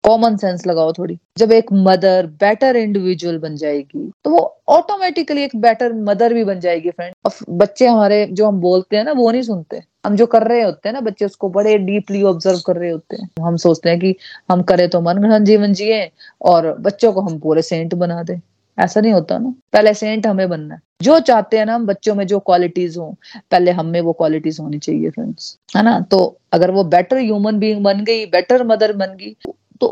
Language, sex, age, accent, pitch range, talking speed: Hindi, female, 30-49, native, 180-220 Hz, 215 wpm